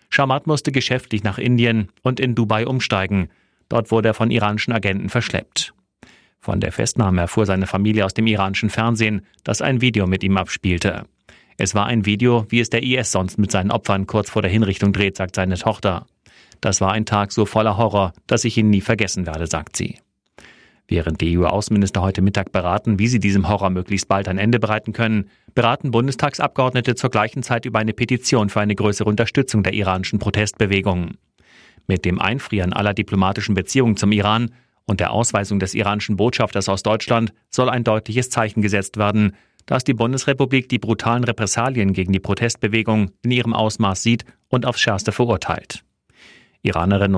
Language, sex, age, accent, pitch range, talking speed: German, male, 30-49, German, 100-115 Hz, 175 wpm